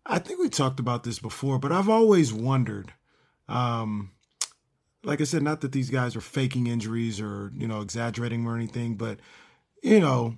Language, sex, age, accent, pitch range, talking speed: English, male, 40-59, American, 130-165 Hz, 180 wpm